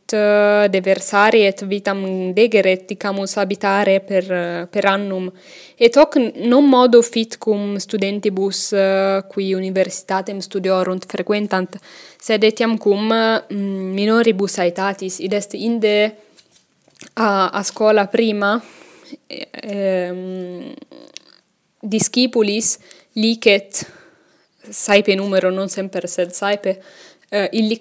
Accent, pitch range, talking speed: Italian, 190-215 Hz, 90 wpm